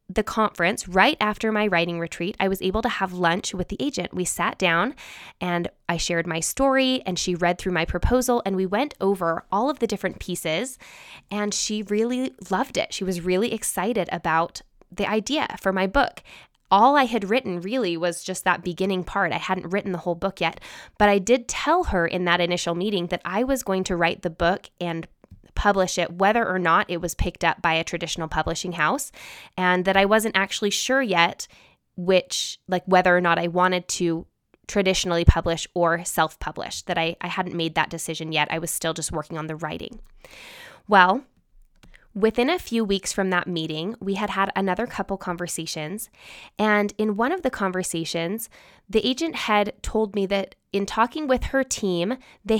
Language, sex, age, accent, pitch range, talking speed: English, female, 10-29, American, 175-220 Hz, 195 wpm